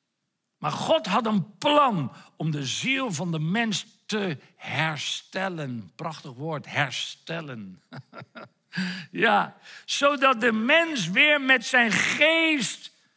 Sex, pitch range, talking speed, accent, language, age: male, 175-265 Hz, 110 wpm, Dutch, Dutch, 60-79